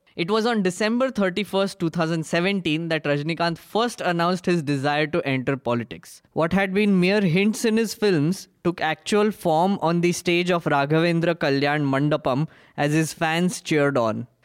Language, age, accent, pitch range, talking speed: English, 20-39, Indian, 150-185 Hz, 160 wpm